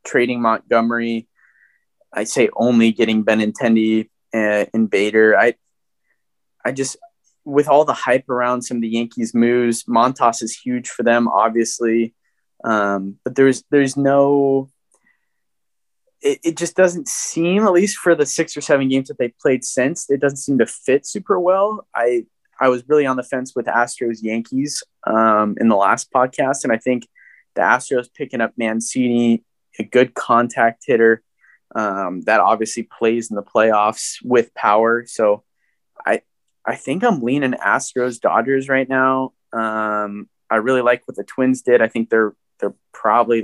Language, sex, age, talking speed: English, male, 20-39, 160 wpm